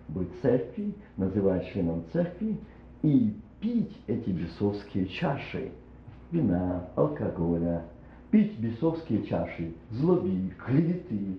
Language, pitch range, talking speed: Russian, 85-140 Hz, 90 wpm